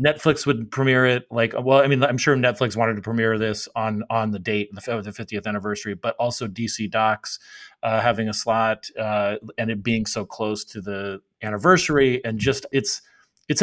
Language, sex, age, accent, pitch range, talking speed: English, male, 30-49, American, 110-135 Hz, 195 wpm